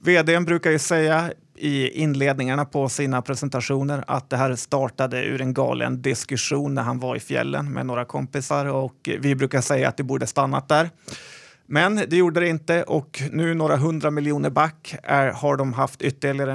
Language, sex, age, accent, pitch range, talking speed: Swedish, male, 30-49, native, 135-155 Hz, 180 wpm